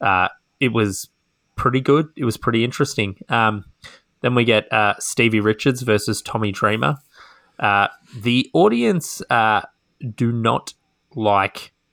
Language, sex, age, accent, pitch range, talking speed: English, male, 20-39, Australian, 95-120 Hz, 130 wpm